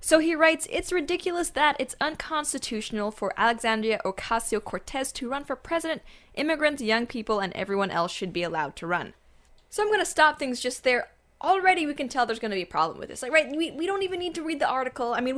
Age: 10-29